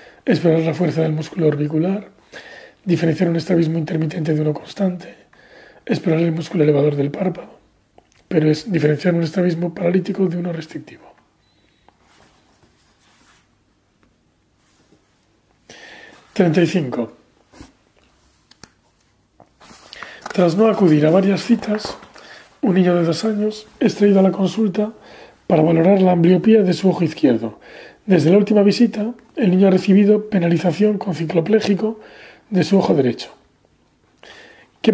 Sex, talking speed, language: male, 120 wpm, Spanish